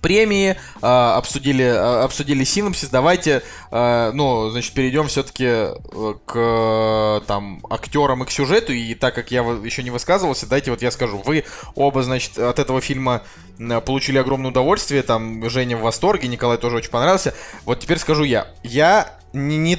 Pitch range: 120-145 Hz